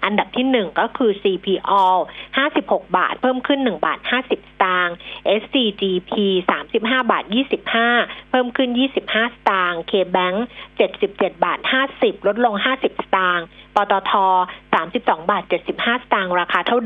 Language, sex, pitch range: Thai, female, 195-260 Hz